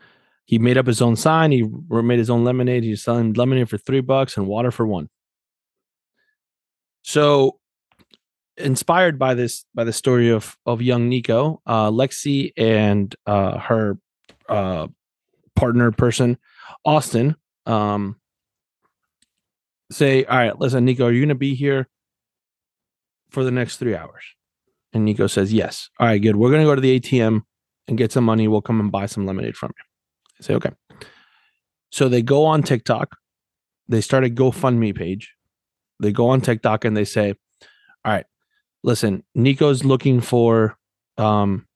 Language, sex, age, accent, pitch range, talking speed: English, male, 30-49, American, 110-135 Hz, 155 wpm